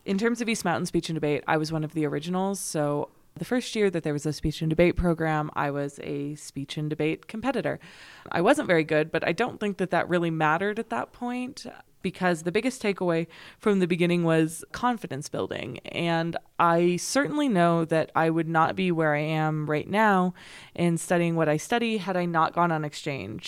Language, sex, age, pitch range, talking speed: English, female, 20-39, 155-185 Hz, 210 wpm